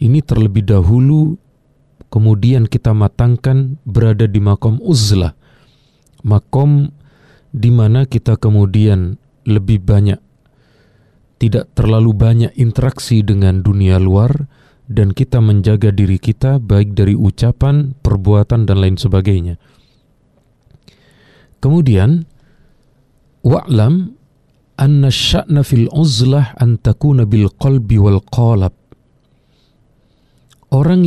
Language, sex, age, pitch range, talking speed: Indonesian, male, 40-59, 105-140 Hz, 95 wpm